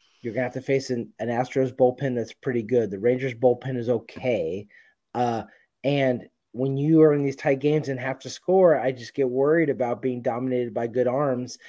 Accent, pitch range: American, 120-150 Hz